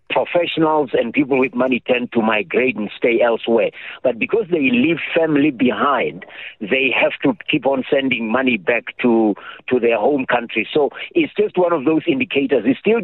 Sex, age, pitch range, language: male, 60-79, 125-165 Hz, English